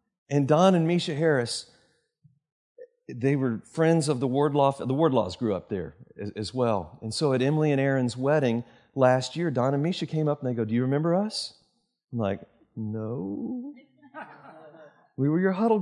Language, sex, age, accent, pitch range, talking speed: English, male, 40-59, American, 130-185 Hz, 175 wpm